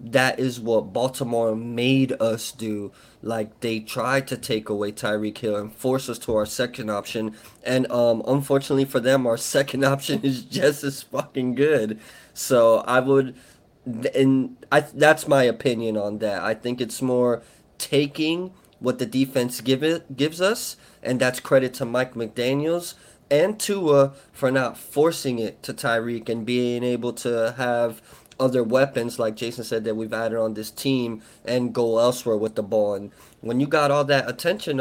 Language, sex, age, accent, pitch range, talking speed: English, male, 20-39, American, 115-135 Hz, 175 wpm